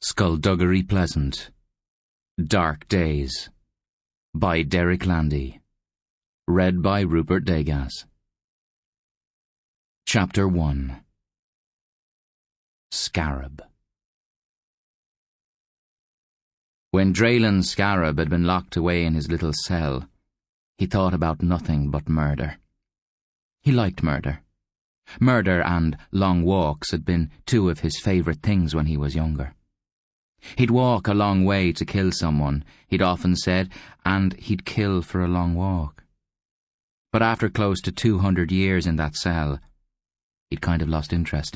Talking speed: 120 wpm